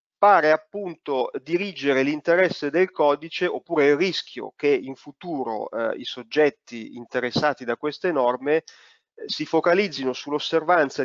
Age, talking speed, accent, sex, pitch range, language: 30-49, 120 wpm, native, male, 125-165 Hz, Italian